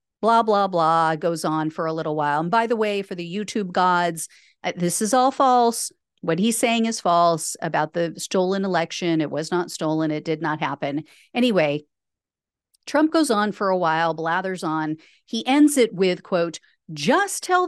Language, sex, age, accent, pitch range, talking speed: English, female, 40-59, American, 175-255 Hz, 185 wpm